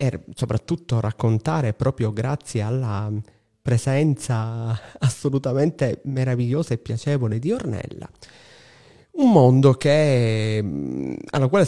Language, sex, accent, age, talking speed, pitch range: Italian, male, native, 30-49, 85 wpm, 110-135 Hz